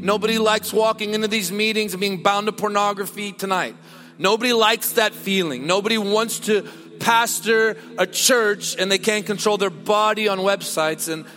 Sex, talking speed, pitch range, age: male, 165 wpm, 170-240 Hz, 40-59